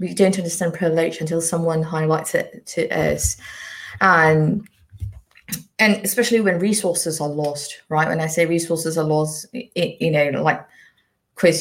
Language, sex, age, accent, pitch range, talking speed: English, female, 20-39, British, 165-210 Hz, 155 wpm